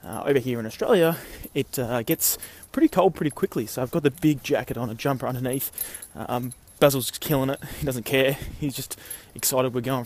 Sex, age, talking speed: male, 20-39, 205 wpm